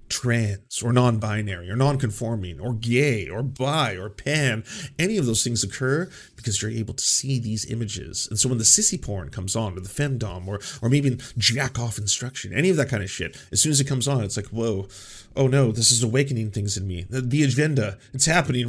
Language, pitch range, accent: English, 110-140 Hz, American